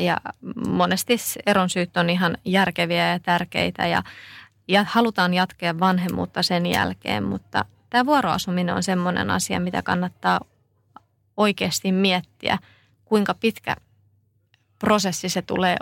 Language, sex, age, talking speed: Finnish, female, 30-49, 120 wpm